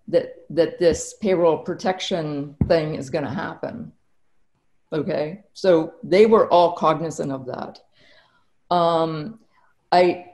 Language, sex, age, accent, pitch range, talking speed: English, female, 50-69, American, 165-205 Hz, 115 wpm